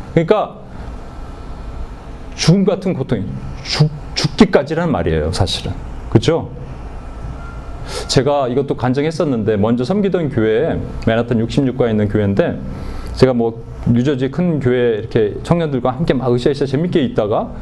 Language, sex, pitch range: Korean, male, 115-175 Hz